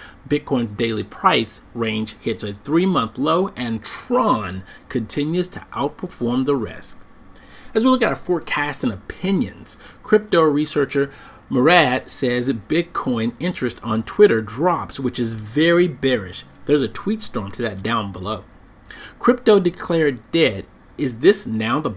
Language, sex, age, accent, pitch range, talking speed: English, male, 40-59, American, 115-170 Hz, 140 wpm